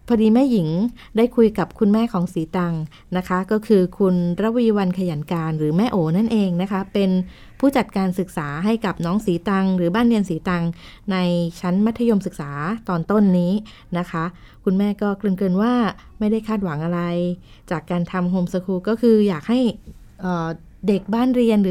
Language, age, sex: Thai, 20-39, female